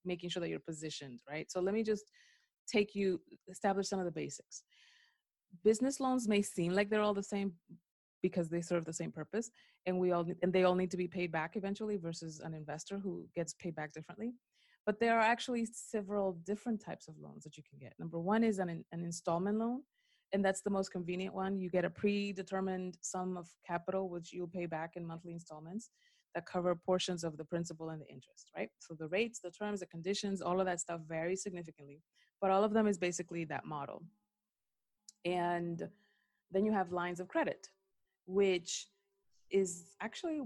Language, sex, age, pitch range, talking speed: English, female, 30-49, 170-210 Hz, 195 wpm